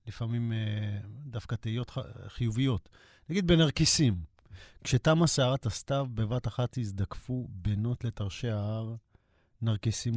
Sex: male